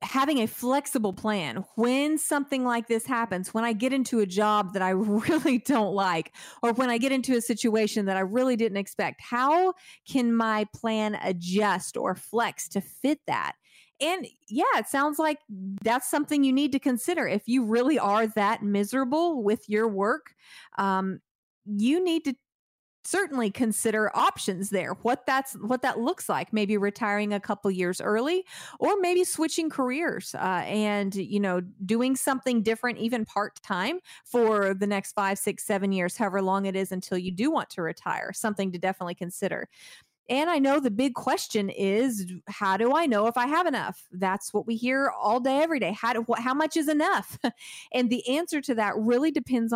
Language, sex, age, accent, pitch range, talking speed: English, female, 40-59, American, 200-270 Hz, 185 wpm